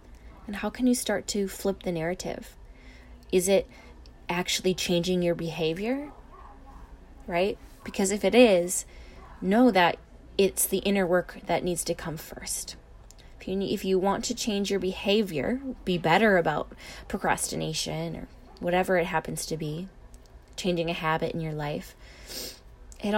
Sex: female